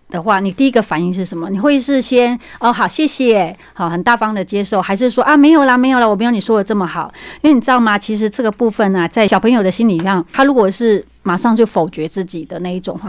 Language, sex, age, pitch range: Chinese, female, 30-49, 180-235 Hz